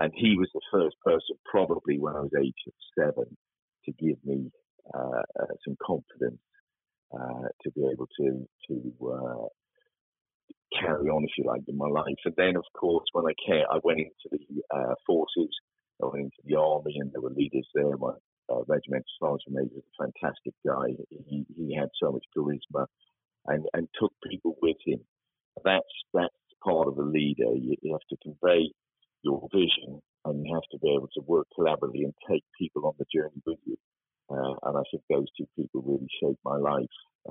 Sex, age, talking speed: male, 50-69, 185 wpm